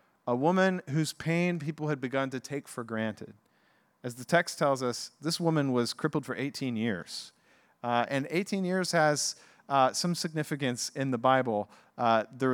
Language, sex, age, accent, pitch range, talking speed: English, male, 40-59, American, 120-155 Hz, 170 wpm